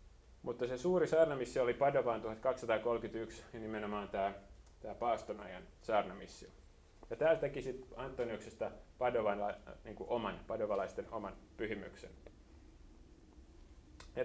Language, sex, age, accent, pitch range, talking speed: Finnish, male, 30-49, native, 100-145 Hz, 100 wpm